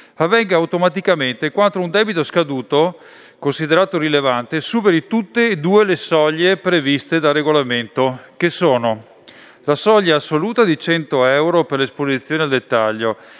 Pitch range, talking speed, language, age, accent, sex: 140-190 Hz, 130 wpm, Italian, 40-59, native, male